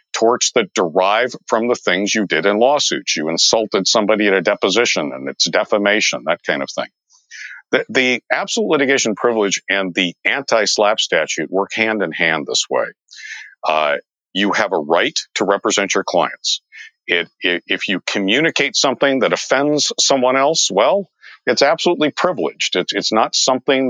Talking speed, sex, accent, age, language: 165 wpm, male, American, 50-69, English